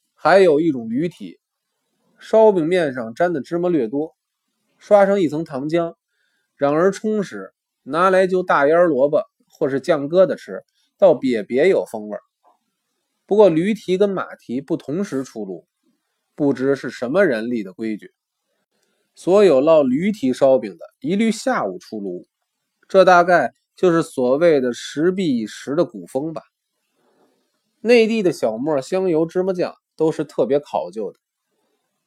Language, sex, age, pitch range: Chinese, male, 20-39, 145-210 Hz